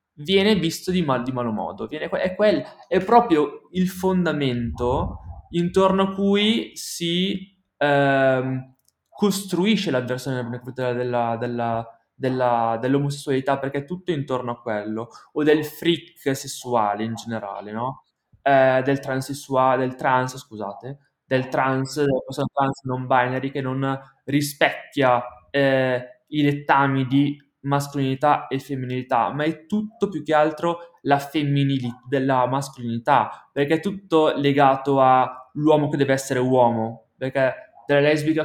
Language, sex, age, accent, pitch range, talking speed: Italian, male, 20-39, native, 125-155 Hz, 130 wpm